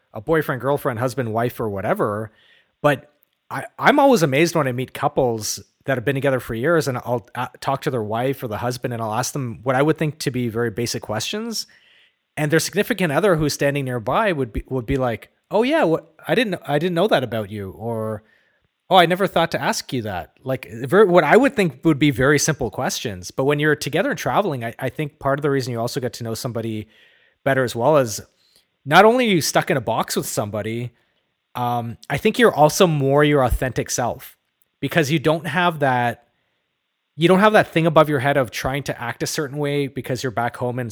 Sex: male